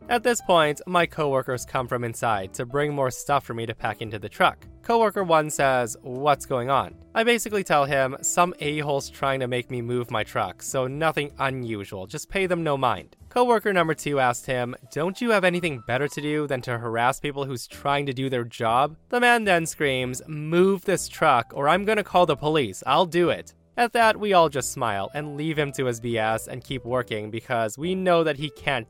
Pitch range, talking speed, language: 120-170 Hz, 220 wpm, English